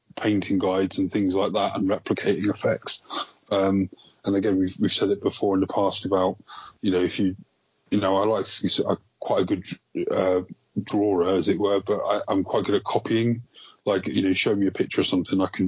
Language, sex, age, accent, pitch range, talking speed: English, male, 20-39, British, 95-100 Hz, 205 wpm